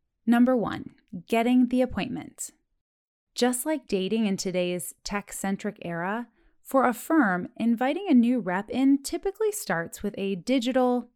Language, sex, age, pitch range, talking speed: English, female, 20-39, 180-265 Hz, 135 wpm